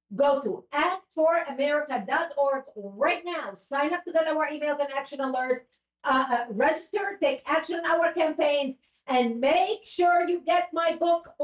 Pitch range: 275-335 Hz